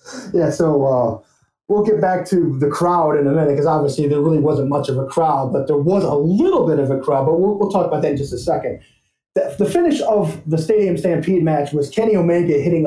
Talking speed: 240 wpm